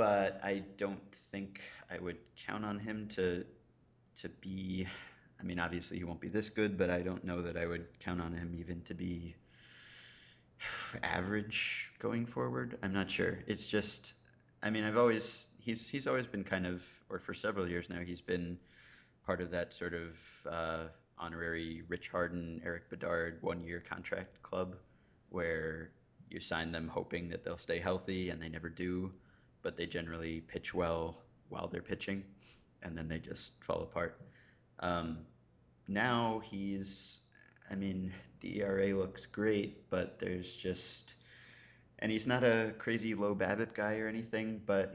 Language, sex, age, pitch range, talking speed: English, male, 30-49, 85-105 Hz, 165 wpm